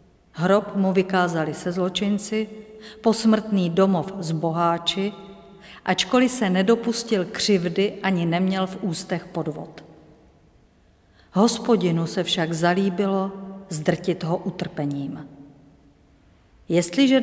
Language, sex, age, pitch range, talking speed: Czech, female, 50-69, 165-205 Hz, 90 wpm